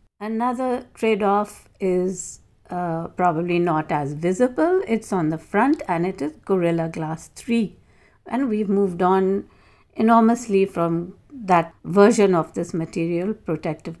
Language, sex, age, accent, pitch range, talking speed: English, female, 50-69, Indian, 170-225 Hz, 130 wpm